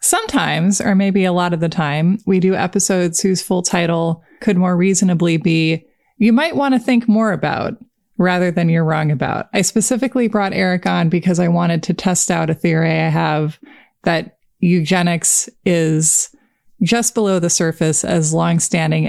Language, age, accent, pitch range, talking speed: English, 20-39, American, 160-200 Hz, 170 wpm